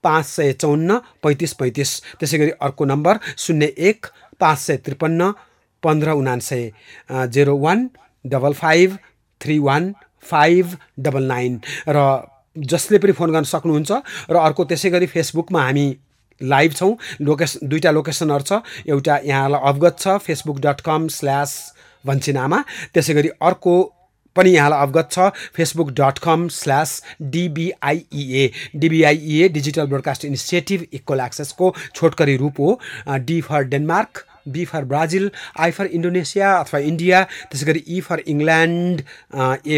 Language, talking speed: English, 80 wpm